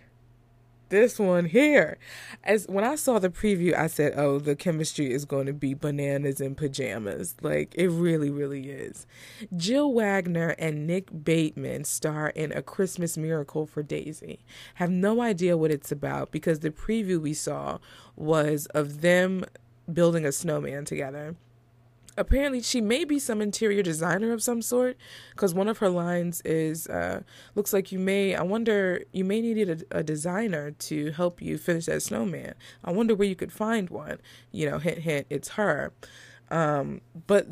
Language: English